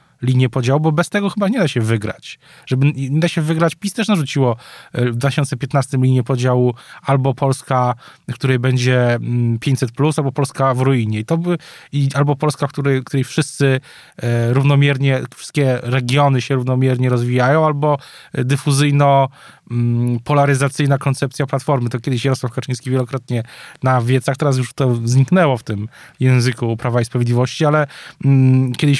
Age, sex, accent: 20-39, male, native